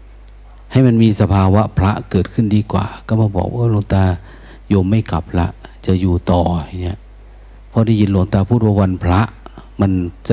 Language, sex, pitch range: Thai, male, 90-115 Hz